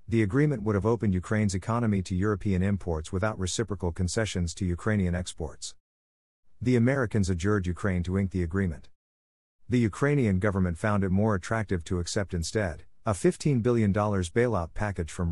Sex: male